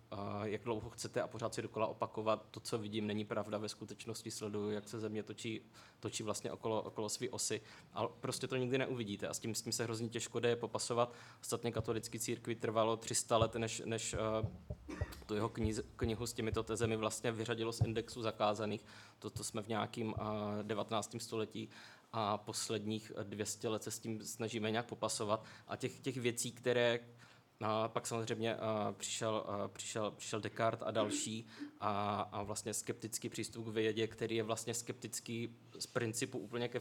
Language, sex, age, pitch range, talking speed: Czech, male, 20-39, 110-120 Hz, 170 wpm